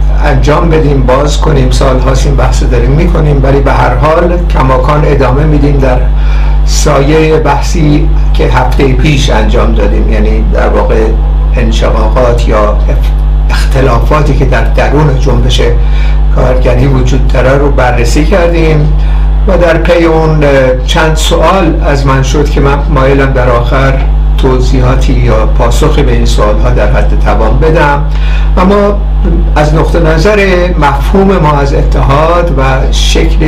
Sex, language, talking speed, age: male, Persian, 130 wpm, 60-79